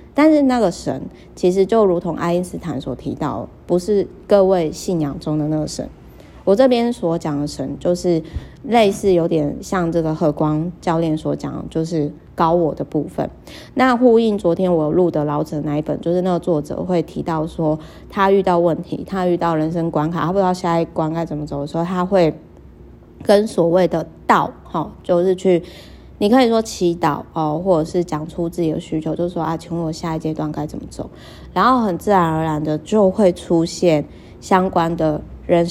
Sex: female